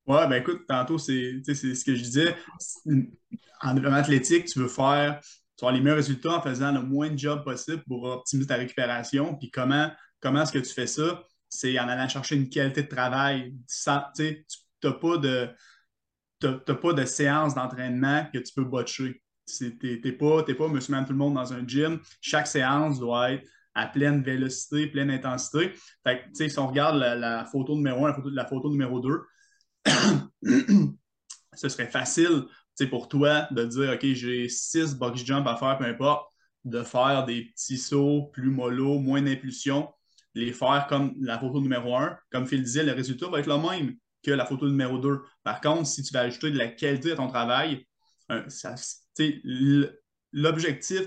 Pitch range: 130-150 Hz